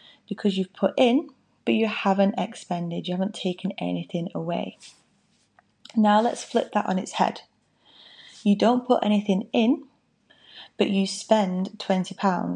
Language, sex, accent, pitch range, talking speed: English, female, British, 180-220 Hz, 140 wpm